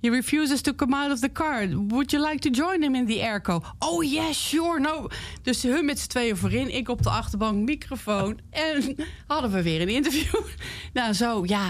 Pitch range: 165-230 Hz